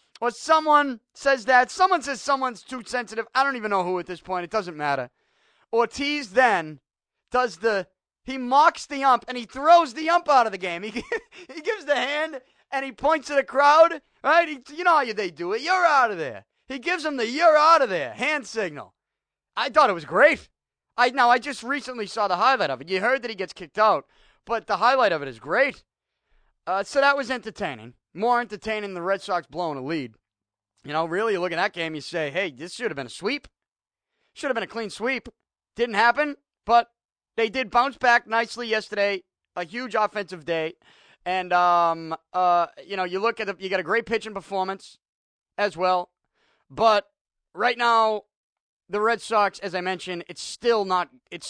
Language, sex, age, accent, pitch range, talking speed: English, male, 30-49, American, 185-270 Hz, 210 wpm